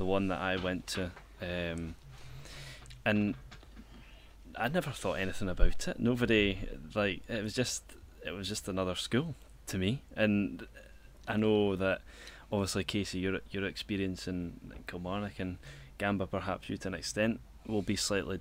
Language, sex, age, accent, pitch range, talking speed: English, male, 10-29, British, 85-100 Hz, 155 wpm